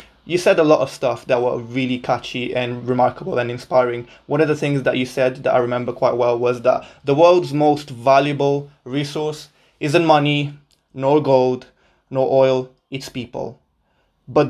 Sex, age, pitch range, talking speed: male, 20-39, 125-155 Hz, 175 wpm